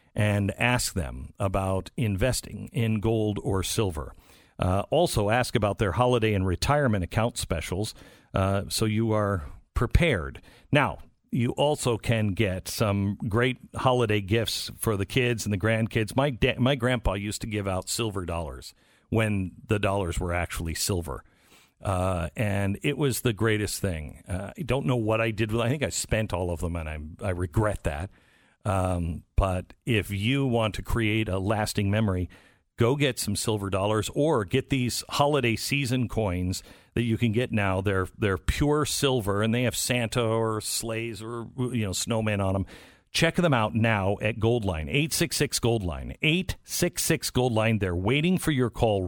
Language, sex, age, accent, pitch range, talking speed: English, male, 50-69, American, 95-120 Hz, 170 wpm